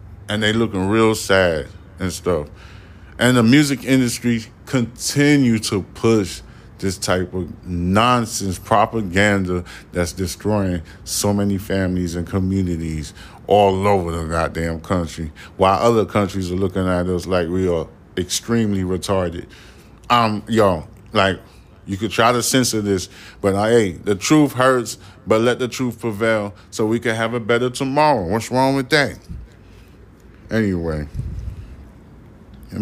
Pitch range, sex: 90-110 Hz, male